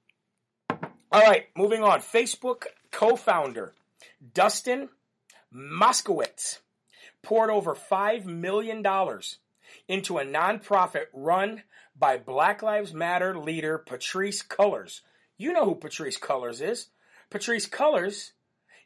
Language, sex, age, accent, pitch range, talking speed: English, male, 40-59, American, 170-220 Hz, 100 wpm